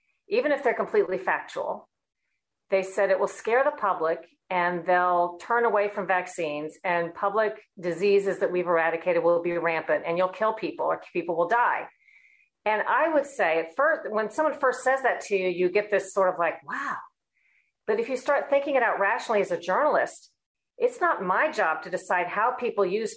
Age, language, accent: 40-59, English, American